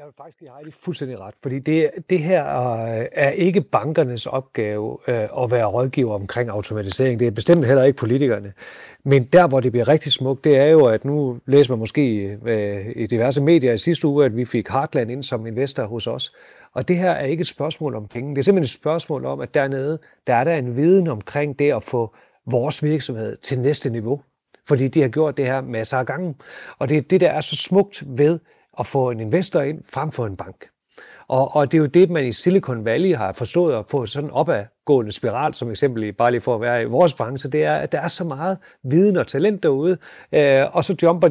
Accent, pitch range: native, 125-165 Hz